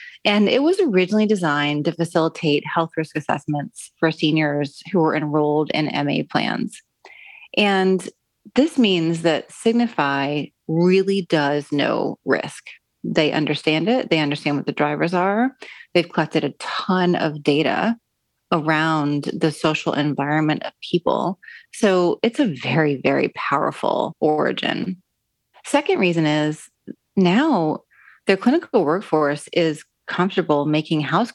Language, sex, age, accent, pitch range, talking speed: English, female, 30-49, American, 150-190 Hz, 125 wpm